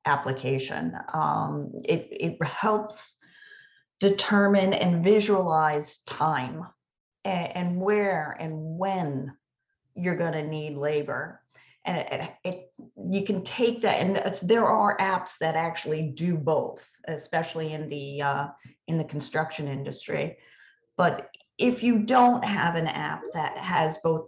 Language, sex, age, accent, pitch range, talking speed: English, female, 40-59, American, 150-195 Hz, 135 wpm